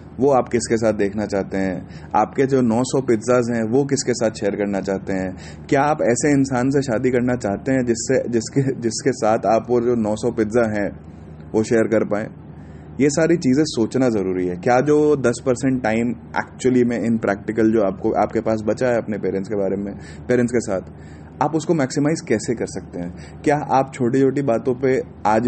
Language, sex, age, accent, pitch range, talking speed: Hindi, male, 30-49, native, 105-135 Hz, 205 wpm